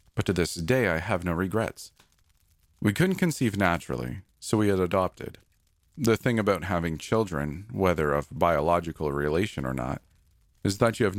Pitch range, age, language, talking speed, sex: 85-105 Hz, 40-59, English, 165 wpm, male